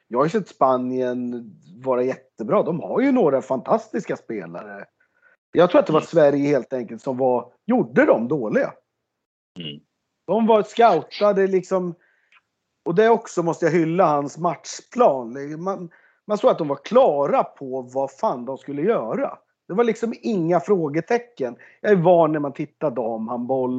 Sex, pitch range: male, 135-180 Hz